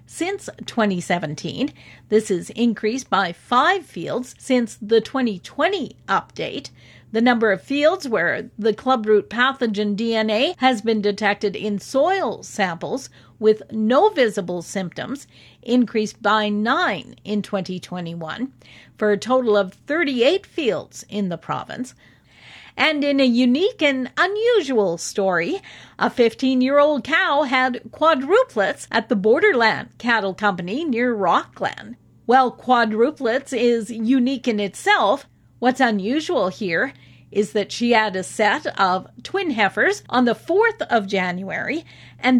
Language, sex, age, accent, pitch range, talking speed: English, female, 50-69, American, 210-280 Hz, 125 wpm